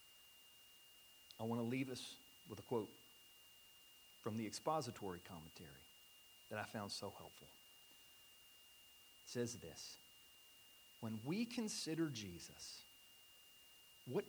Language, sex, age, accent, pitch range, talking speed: English, male, 40-59, American, 115-175 Hz, 105 wpm